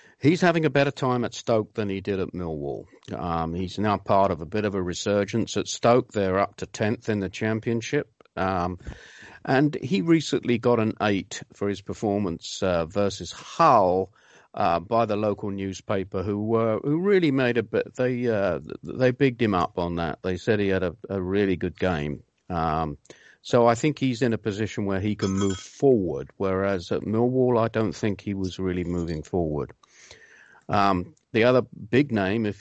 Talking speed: 190 wpm